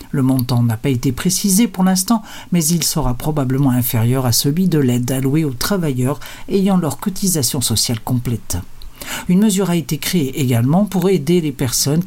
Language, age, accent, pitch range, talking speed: Portuguese, 60-79, French, 130-180 Hz, 175 wpm